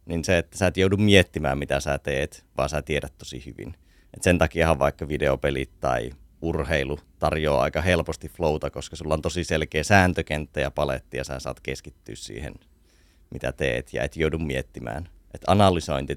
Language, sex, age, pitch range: Finnish, male, 30-49, 70-85 Hz